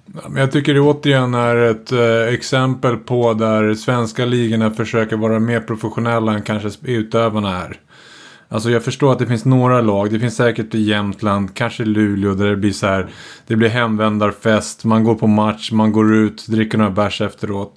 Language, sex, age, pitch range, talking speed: Swedish, male, 30-49, 110-125 Hz, 170 wpm